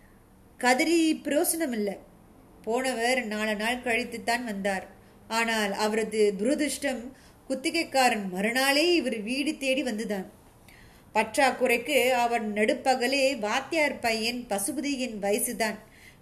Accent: native